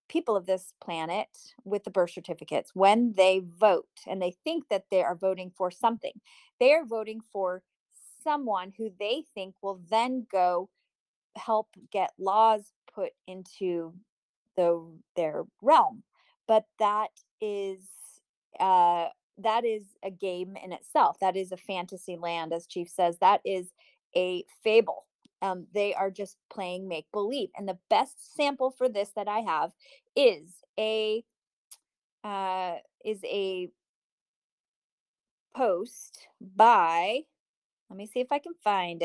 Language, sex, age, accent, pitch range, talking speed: English, female, 30-49, American, 185-235 Hz, 140 wpm